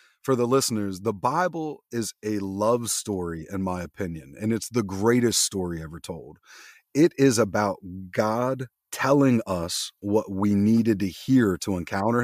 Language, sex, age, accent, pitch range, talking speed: English, male, 30-49, American, 95-130 Hz, 155 wpm